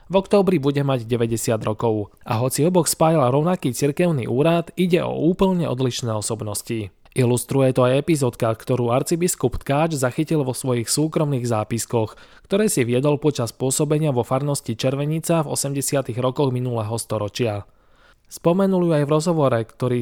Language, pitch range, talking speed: Slovak, 120-160 Hz, 145 wpm